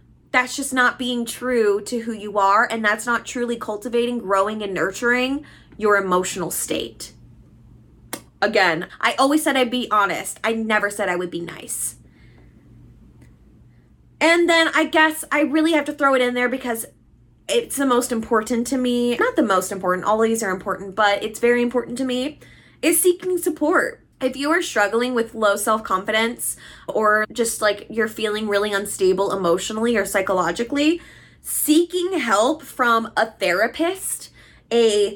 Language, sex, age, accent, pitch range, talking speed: English, female, 20-39, American, 210-295 Hz, 160 wpm